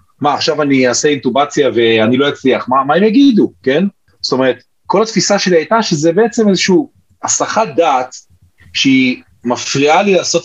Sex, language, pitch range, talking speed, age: male, Hebrew, 115-180 Hz, 160 wpm, 30-49